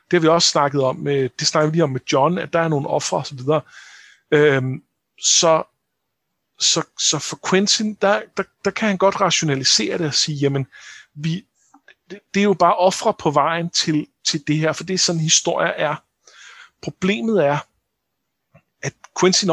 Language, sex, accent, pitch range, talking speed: Danish, male, native, 150-190 Hz, 180 wpm